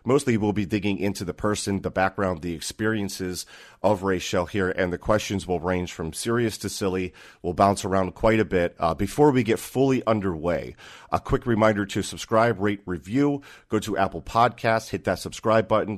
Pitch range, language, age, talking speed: 90-110 Hz, English, 30-49, 190 wpm